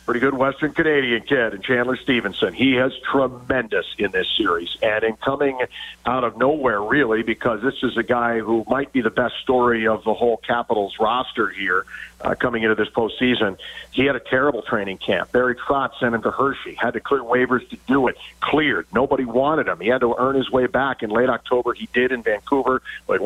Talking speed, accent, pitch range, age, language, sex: 210 wpm, American, 115-130 Hz, 50-69, English, male